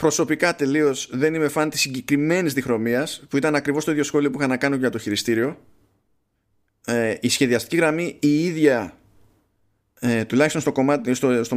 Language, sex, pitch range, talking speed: Greek, male, 115-145 Hz, 150 wpm